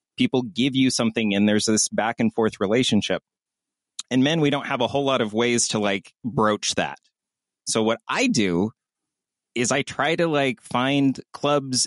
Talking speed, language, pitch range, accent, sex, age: 180 wpm, English, 115-150 Hz, American, male, 30-49